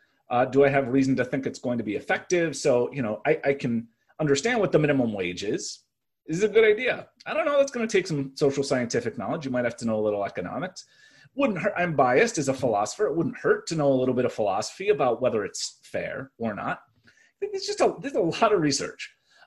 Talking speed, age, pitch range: 245 wpm, 30-49, 120-170 Hz